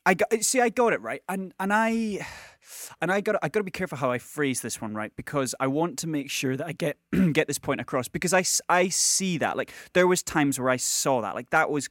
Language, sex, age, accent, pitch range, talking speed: English, male, 20-39, British, 130-175 Hz, 265 wpm